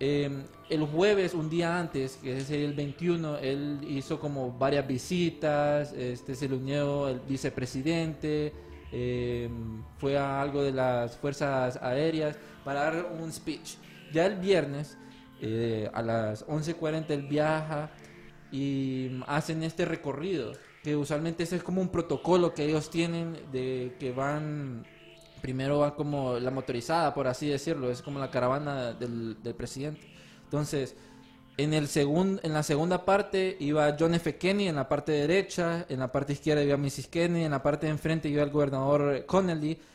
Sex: male